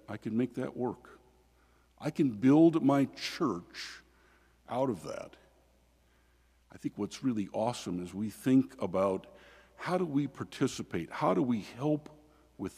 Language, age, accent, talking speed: English, 60-79, American, 145 wpm